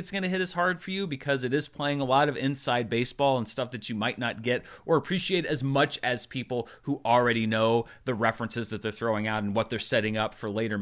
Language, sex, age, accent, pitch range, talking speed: English, male, 30-49, American, 120-160 Hz, 250 wpm